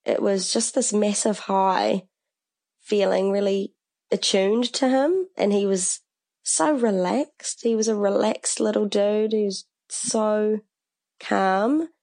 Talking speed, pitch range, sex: 125 wpm, 185-225 Hz, female